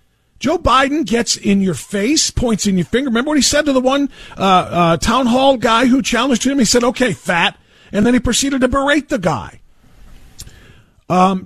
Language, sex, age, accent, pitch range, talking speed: English, male, 40-59, American, 200-250 Hz, 200 wpm